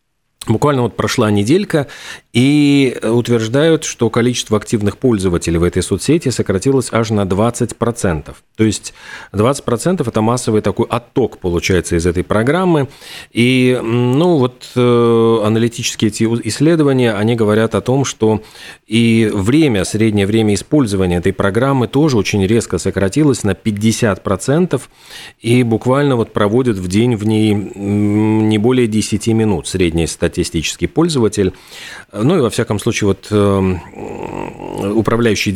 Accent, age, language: native, 30-49, Russian